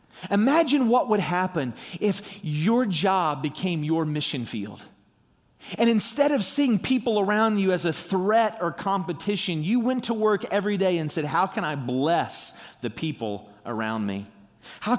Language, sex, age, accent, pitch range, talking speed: English, male, 40-59, American, 140-205 Hz, 160 wpm